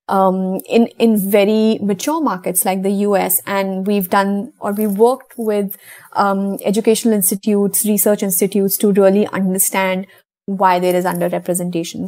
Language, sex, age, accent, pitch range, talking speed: English, female, 20-39, Indian, 195-235 Hz, 140 wpm